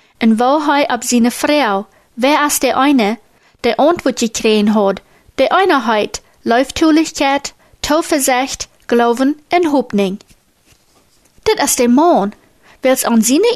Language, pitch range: German, 235-320 Hz